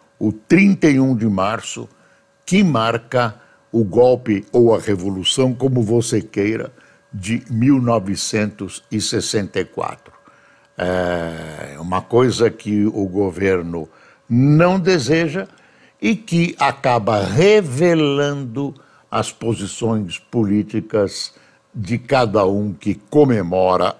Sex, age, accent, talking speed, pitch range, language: male, 60-79, Brazilian, 90 wpm, 105-135 Hz, Portuguese